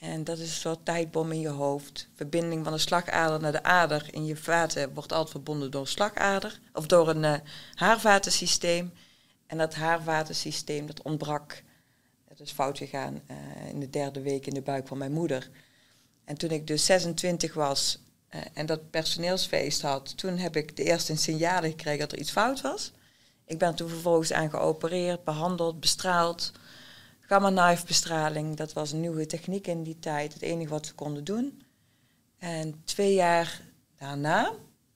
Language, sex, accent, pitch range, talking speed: Dutch, female, Dutch, 145-165 Hz, 170 wpm